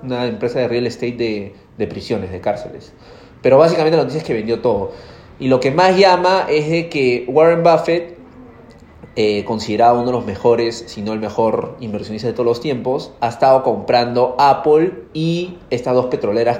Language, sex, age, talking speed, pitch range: Spanish, male, 30-49, 185 wpm, 115-145 Hz